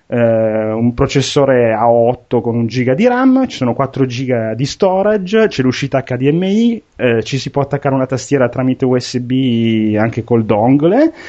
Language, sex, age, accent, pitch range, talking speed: Italian, male, 30-49, native, 120-150 Hz, 165 wpm